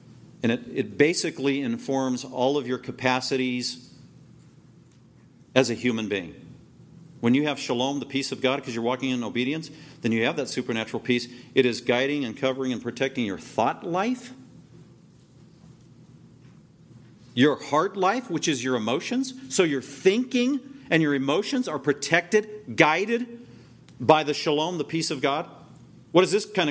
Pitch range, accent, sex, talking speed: 130-170 Hz, American, male, 155 wpm